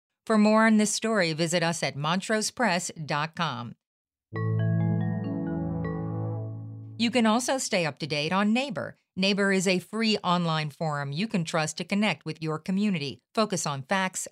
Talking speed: 145 wpm